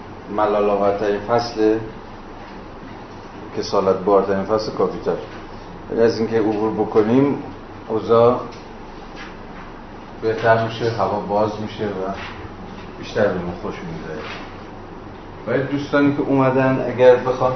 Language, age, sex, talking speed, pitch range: Persian, 30-49, male, 90 wpm, 100-115 Hz